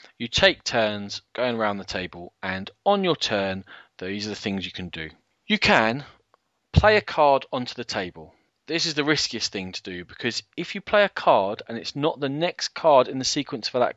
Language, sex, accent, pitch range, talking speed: English, male, British, 100-155 Hz, 215 wpm